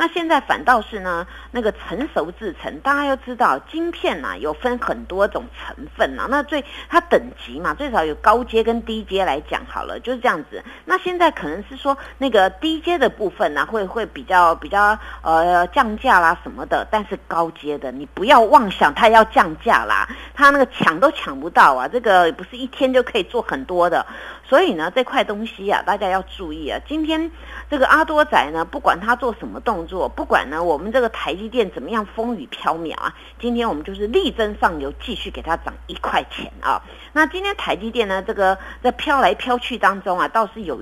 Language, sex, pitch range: Chinese, female, 190-275 Hz